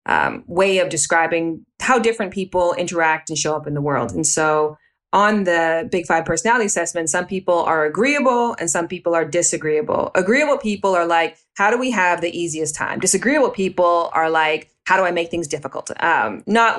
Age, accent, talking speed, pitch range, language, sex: 20-39, American, 195 wpm, 160-185 Hz, English, female